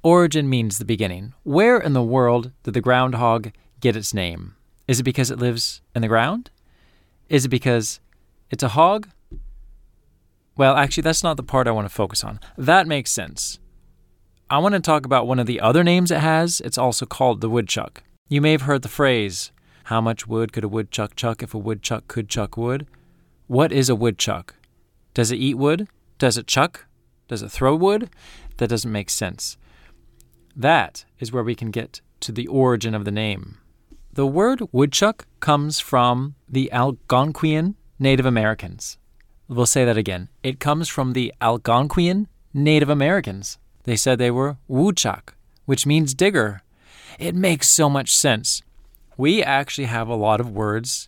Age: 20-39